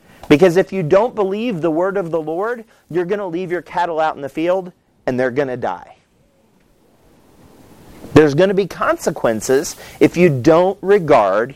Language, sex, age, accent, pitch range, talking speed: English, male, 40-59, American, 130-190 Hz, 175 wpm